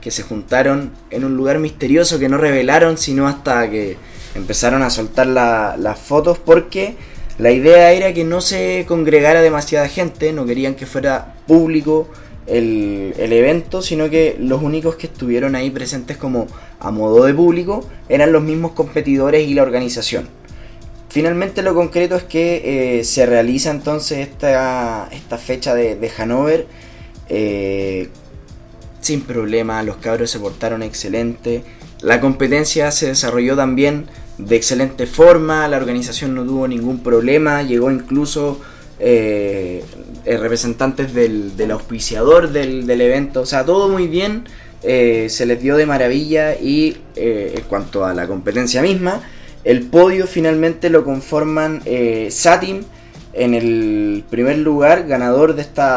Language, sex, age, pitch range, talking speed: Spanish, male, 20-39, 115-155 Hz, 145 wpm